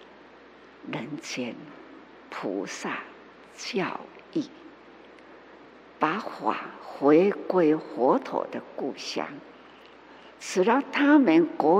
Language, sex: Chinese, female